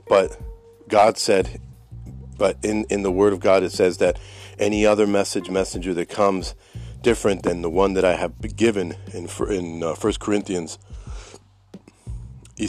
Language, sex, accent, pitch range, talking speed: English, male, American, 95-105 Hz, 155 wpm